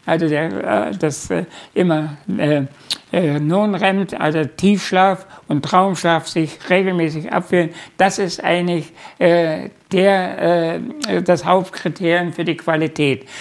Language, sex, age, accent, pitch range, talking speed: German, male, 60-79, German, 165-190 Hz, 120 wpm